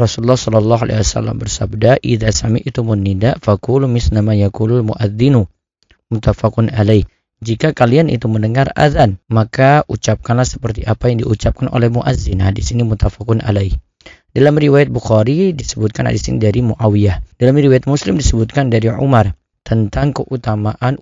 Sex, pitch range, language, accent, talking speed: male, 110-130 Hz, Indonesian, native, 135 wpm